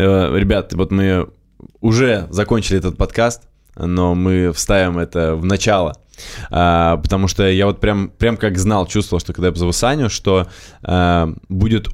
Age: 20-39